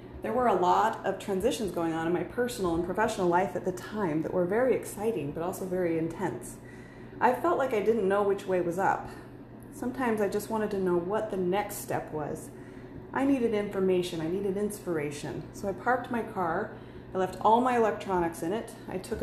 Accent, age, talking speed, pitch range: American, 30-49, 205 wpm, 165-200 Hz